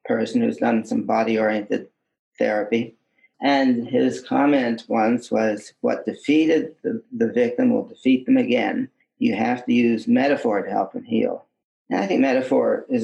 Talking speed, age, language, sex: 155 wpm, 40-59, Arabic, male